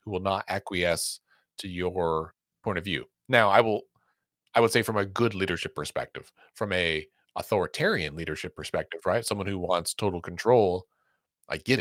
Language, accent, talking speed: English, American, 170 wpm